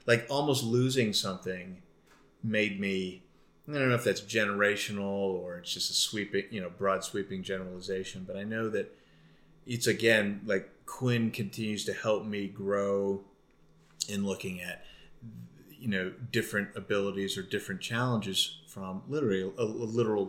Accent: American